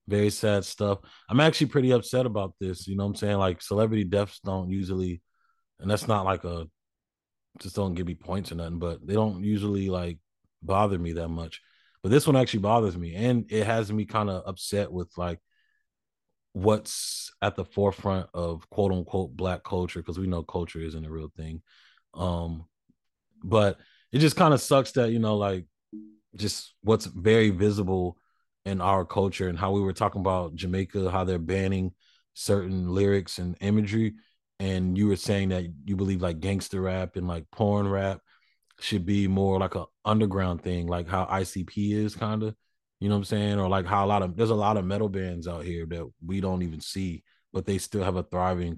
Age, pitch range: 30-49, 90-105 Hz